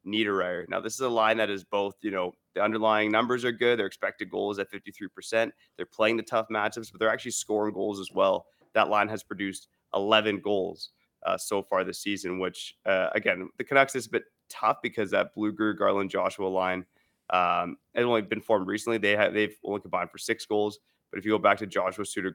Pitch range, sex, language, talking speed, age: 95-115 Hz, male, English, 225 wpm, 20-39